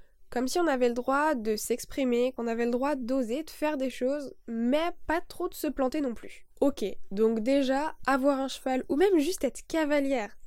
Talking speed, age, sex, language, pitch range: 205 wpm, 10-29, female, French, 235-295 Hz